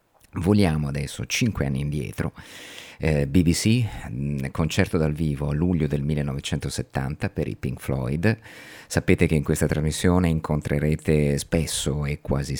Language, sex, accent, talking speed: Italian, male, native, 130 wpm